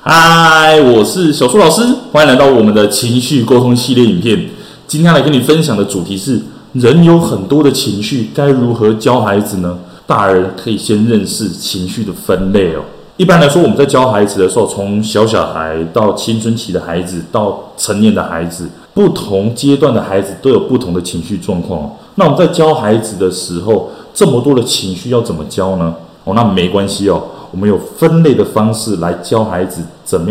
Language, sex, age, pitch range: Chinese, male, 20-39, 95-135 Hz